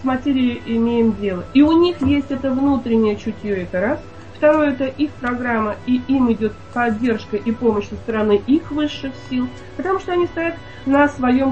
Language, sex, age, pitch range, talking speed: Russian, female, 30-49, 215-280 Hz, 175 wpm